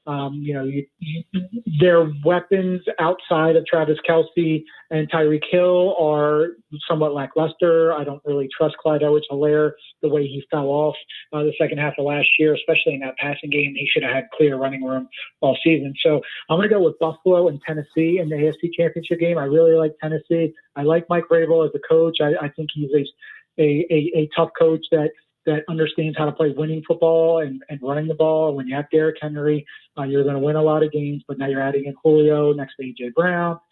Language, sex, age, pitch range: English, male, 30-49, 145-160 Hz